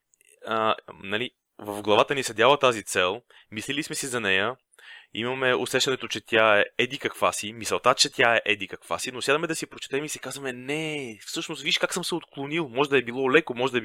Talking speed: 225 wpm